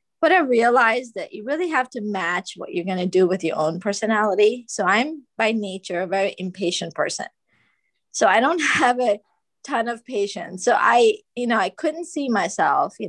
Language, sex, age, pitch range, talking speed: English, female, 20-39, 185-240 Hz, 195 wpm